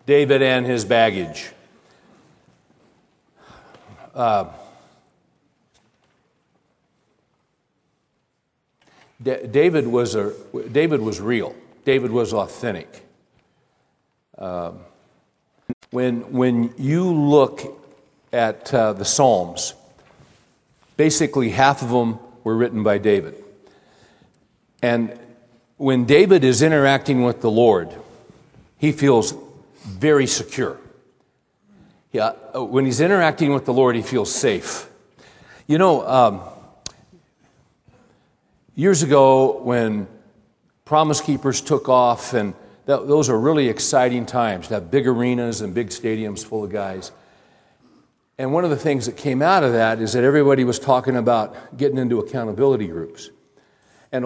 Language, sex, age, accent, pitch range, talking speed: English, male, 60-79, American, 120-145 Hz, 115 wpm